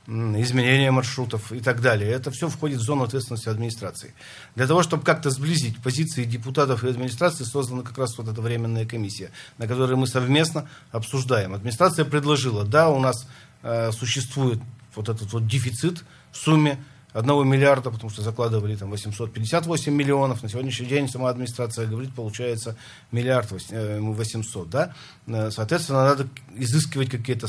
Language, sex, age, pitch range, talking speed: Russian, male, 40-59, 110-140 Hz, 150 wpm